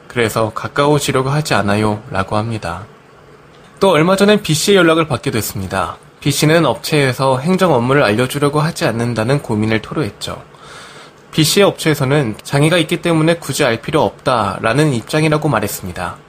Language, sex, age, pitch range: Korean, male, 20-39, 115-160 Hz